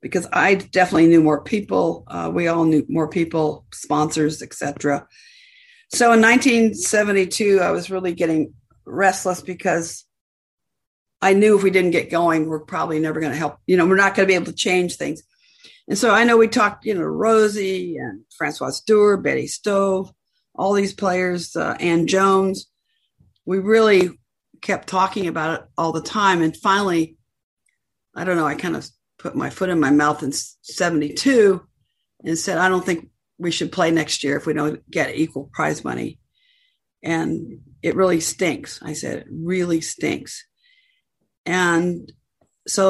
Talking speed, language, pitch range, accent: 170 wpm, English, 165-195 Hz, American